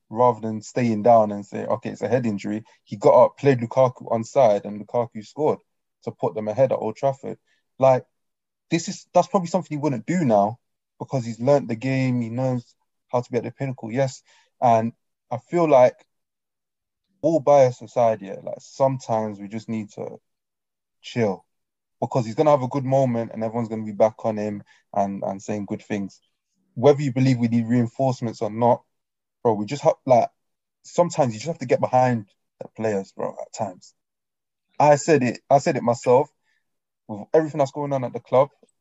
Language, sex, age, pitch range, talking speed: English, male, 20-39, 110-135 Hz, 195 wpm